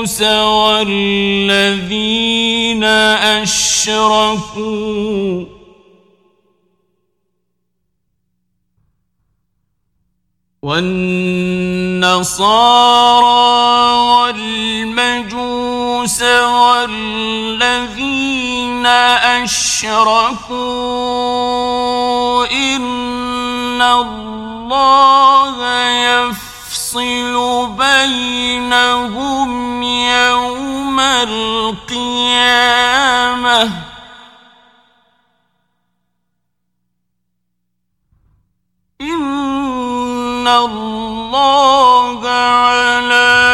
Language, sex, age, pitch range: Persian, male, 40-59, 200-245 Hz